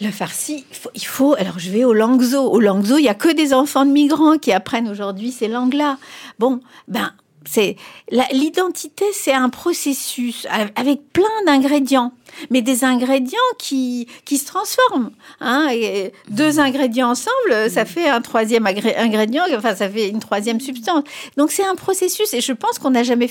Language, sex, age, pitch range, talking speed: French, female, 50-69, 225-295 Hz, 180 wpm